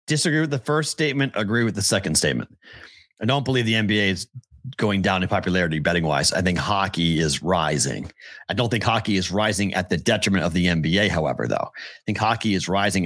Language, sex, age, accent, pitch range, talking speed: English, male, 40-59, American, 85-110 Hz, 205 wpm